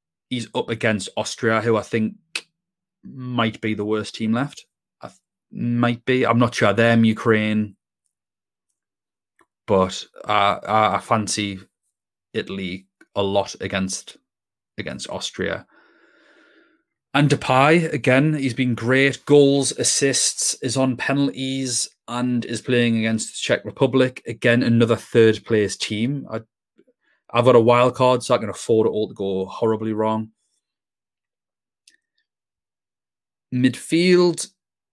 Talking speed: 125 wpm